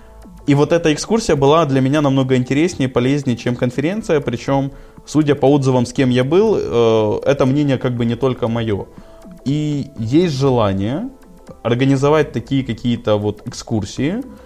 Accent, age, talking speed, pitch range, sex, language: native, 20-39, 155 wpm, 105-135 Hz, male, Russian